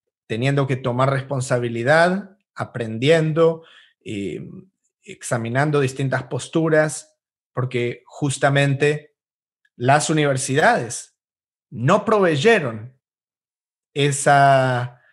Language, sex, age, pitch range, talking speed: English, male, 30-49, 125-150 Hz, 60 wpm